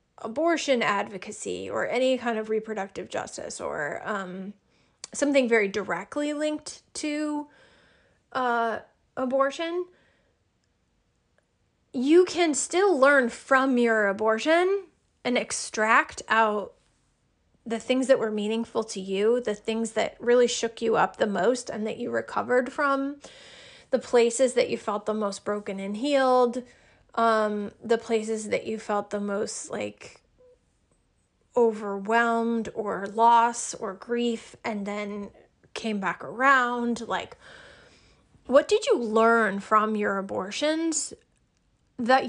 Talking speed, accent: 120 wpm, American